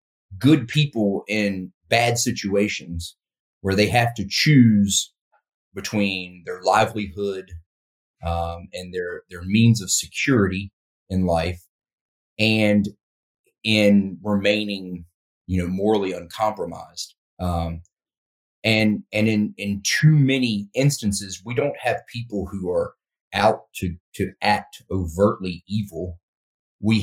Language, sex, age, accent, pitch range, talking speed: English, male, 30-49, American, 90-110 Hz, 110 wpm